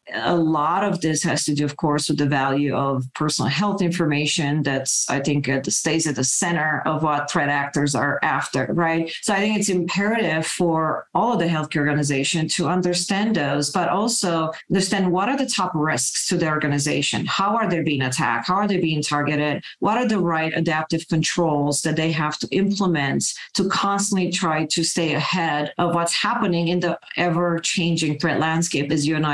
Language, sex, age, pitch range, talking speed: English, female, 40-59, 150-175 Hz, 195 wpm